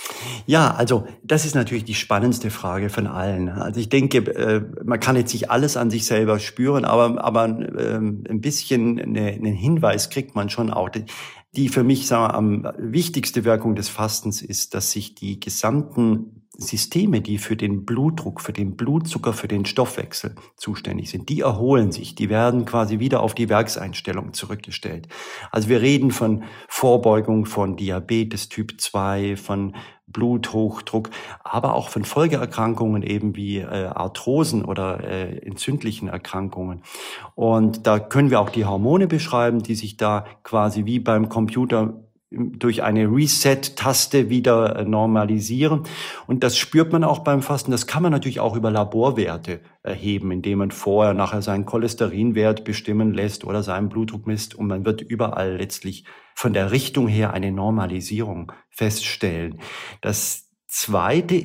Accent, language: German, German